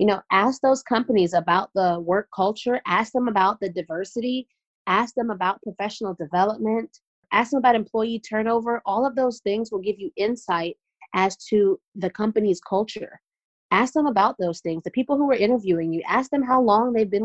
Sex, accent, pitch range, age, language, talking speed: female, American, 180-230 Hz, 30-49, English, 190 wpm